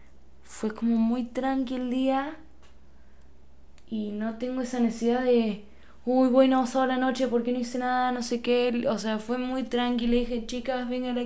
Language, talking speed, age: Spanish, 175 wpm, 10-29